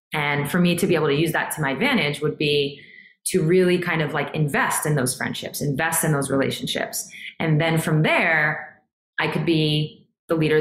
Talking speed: 205 wpm